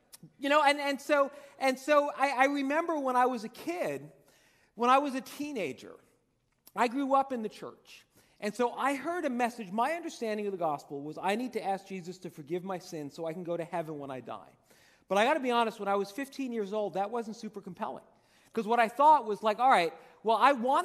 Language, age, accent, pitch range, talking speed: English, 40-59, American, 210-270 Hz, 235 wpm